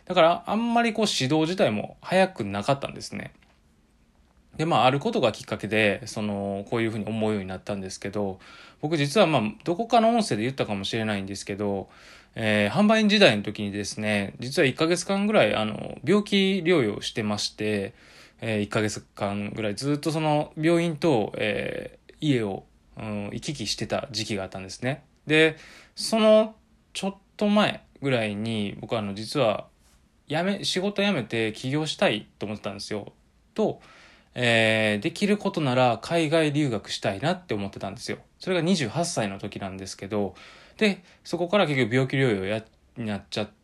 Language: Japanese